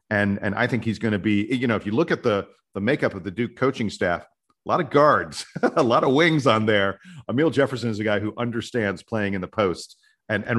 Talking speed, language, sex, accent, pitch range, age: 255 wpm, English, male, American, 105-130 Hz, 40-59